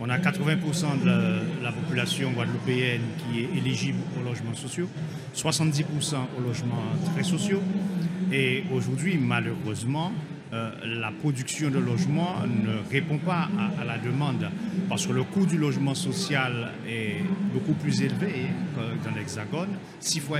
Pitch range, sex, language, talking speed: 135-175 Hz, male, French, 140 wpm